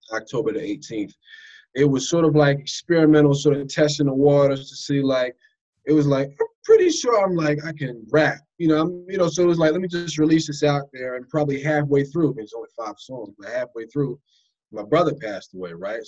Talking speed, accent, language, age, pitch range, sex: 225 wpm, American, English, 20-39, 125-155 Hz, male